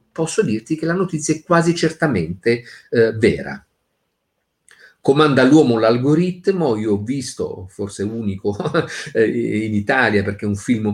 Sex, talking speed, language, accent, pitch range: male, 145 wpm, Italian, native, 110-155 Hz